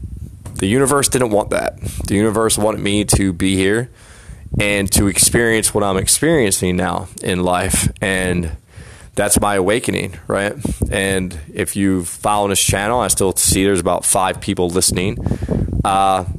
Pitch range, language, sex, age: 95-115 Hz, English, male, 20-39